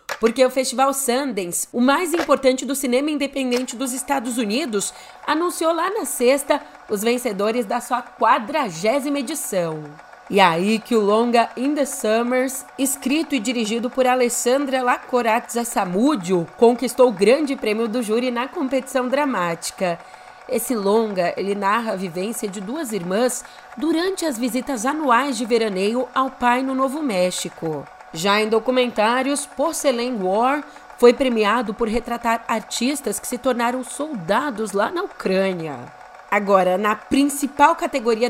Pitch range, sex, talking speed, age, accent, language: 215-265 Hz, female, 140 wpm, 30-49, Brazilian, Portuguese